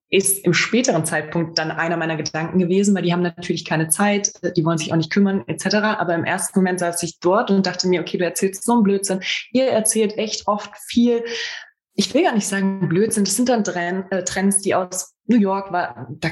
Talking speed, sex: 215 wpm, female